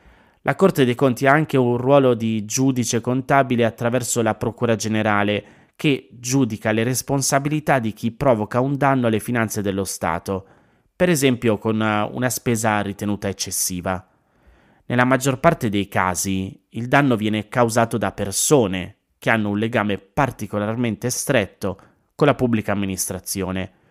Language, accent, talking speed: Italian, native, 140 wpm